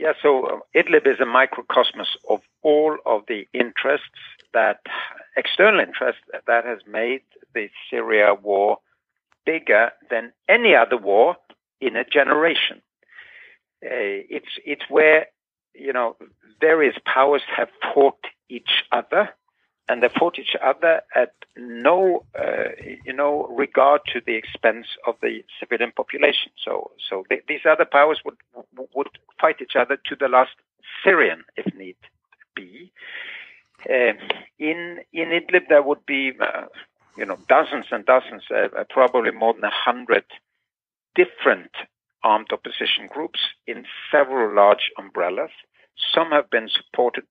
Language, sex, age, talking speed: English, male, 60-79, 140 wpm